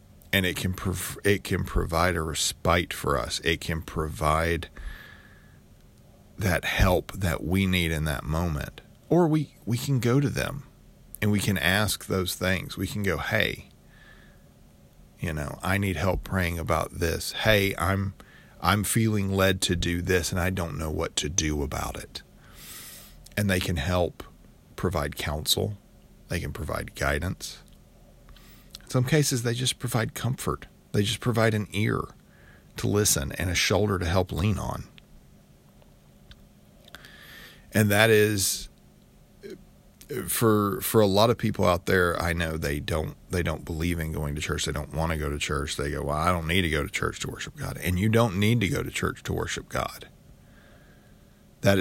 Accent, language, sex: American, English, male